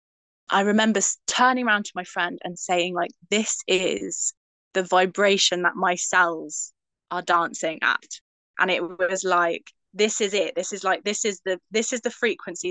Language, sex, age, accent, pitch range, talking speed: English, female, 20-39, British, 180-215 Hz, 175 wpm